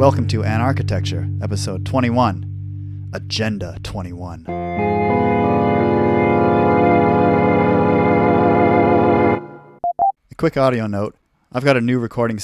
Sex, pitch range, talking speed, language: male, 100-120 Hz, 80 wpm, English